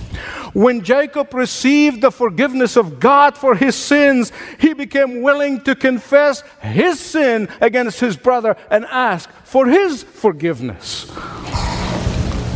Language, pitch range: English, 155-265 Hz